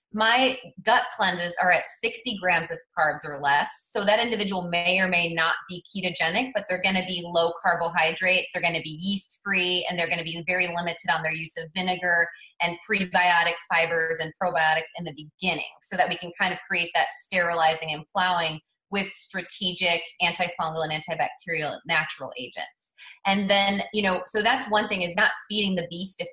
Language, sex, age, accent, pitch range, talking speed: English, female, 20-39, American, 175-215 Hz, 190 wpm